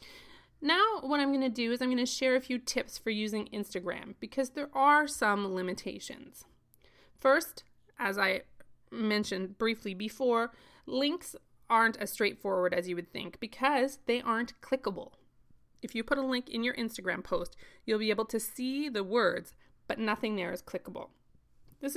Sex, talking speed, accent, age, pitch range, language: female, 170 wpm, American, 20-39, 195-260 Hz, English